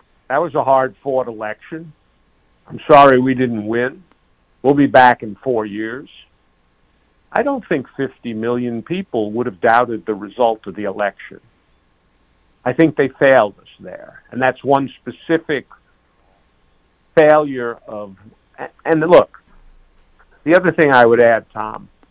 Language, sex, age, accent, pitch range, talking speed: English, male, 50-69, American, 105-145 Hz, 140 wpm